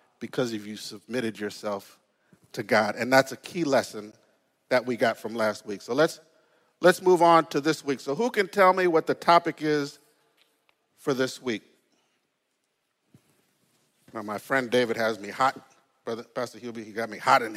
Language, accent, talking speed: English, American, 185 wpm